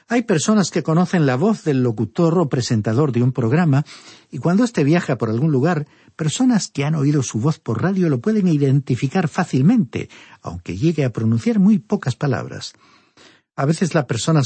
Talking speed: 180 wpm